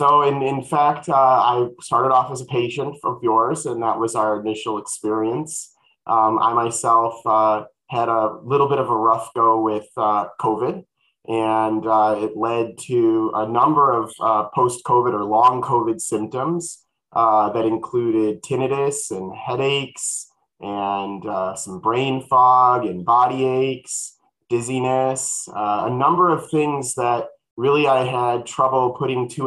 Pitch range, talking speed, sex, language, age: 110-130 Hz, 155 wpm, male, English, 30-49